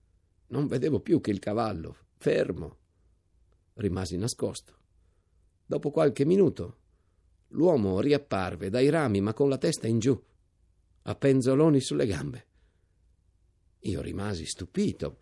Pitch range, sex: 90-130 Hz, male